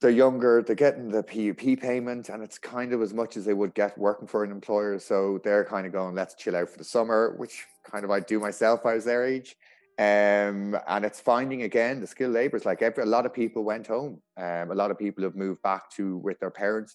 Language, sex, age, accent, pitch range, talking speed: English, male, 30-49, Irish, 85-110 Hz, 245 wpm